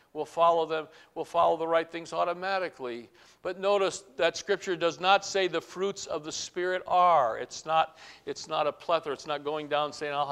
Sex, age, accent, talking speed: male, 60-79, American, 180 wpm